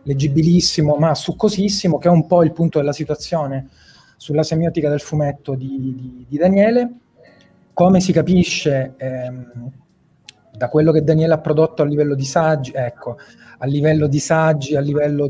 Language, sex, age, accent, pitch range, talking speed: Italian, male, 30-49, native, 140-170 Hz, 155 wpm